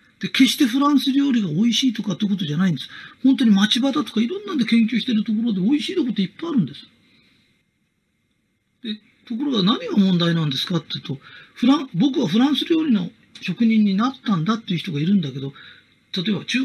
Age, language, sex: 40-59, Japanese, male